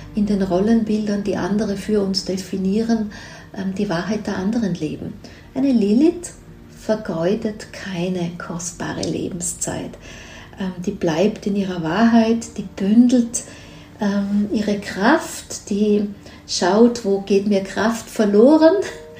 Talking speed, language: 110 wpm, German